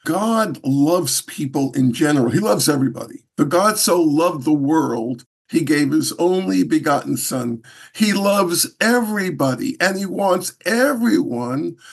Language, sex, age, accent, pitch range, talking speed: English, male, 50-69, American, 155-230 Hz, 135 wpm